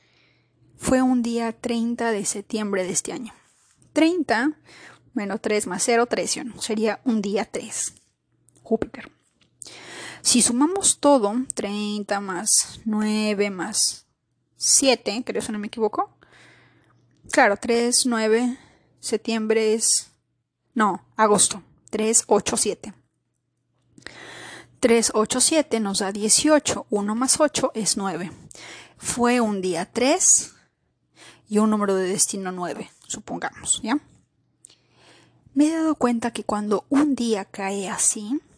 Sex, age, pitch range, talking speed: female, 20-39, 210-260 Hz, 125 wpm